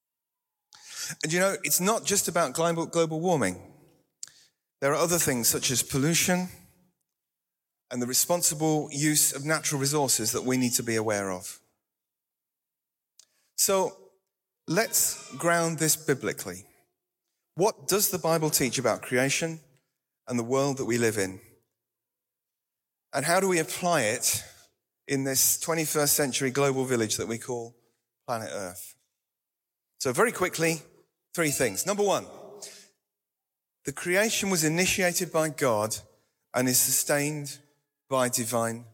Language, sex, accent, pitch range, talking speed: English, male, British, 125-165 Hz, 130 wpm